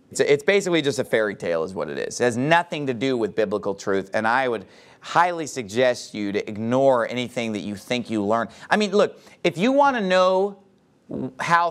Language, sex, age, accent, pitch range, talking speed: English, male, 30-49, American, 125-195 Hz, 210 wpm